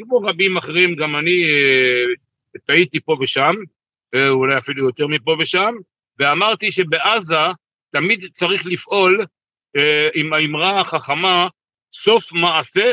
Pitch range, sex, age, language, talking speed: 150-195 Hz, male, 60-79, Hebrew, 120 wpm